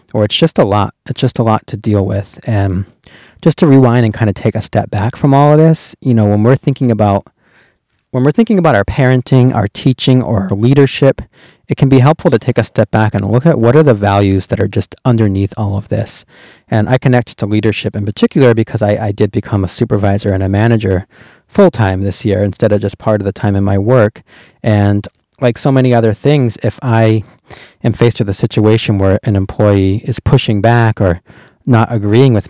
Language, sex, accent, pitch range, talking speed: English, male, American, 100-130 Hz, 220 wpm